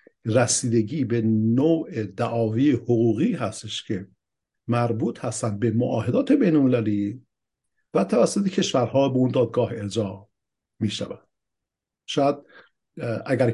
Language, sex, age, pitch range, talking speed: Persian, male, 50-69, 110-145 Hz, 100 wpm